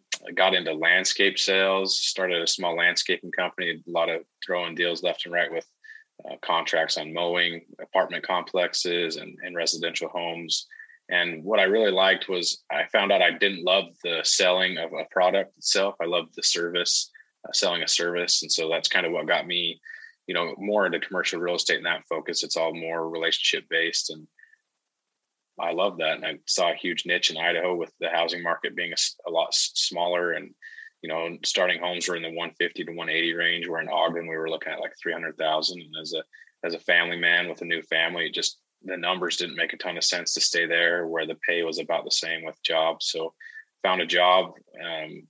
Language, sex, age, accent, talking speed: English, male, 20-39, American, 205 wpm